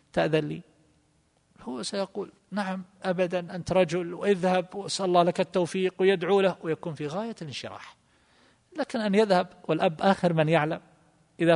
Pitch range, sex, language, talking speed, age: 135-180 Hz, male, Arabic, 140 wpm, 50-69